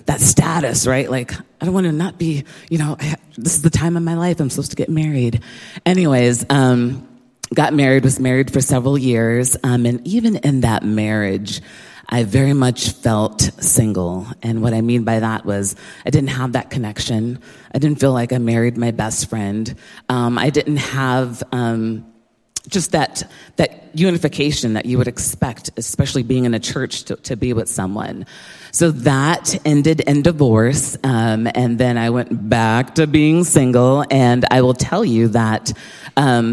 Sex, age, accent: female, 30-49, American